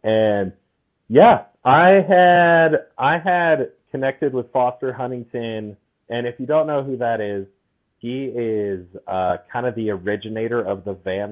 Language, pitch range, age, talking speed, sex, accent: English, 100-130 Hz, 30-49, 150 wpm, male, American